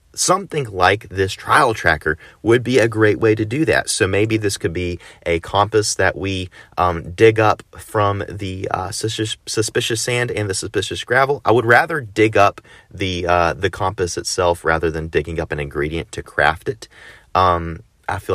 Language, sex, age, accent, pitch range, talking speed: English, male, 30-49, American, 85-110 Hz, 185 wpm